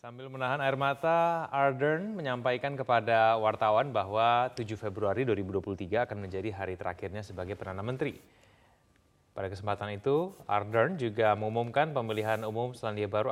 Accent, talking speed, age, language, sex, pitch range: native, 130 wpm, 20-39, Indonesian, male, 105-130 Hz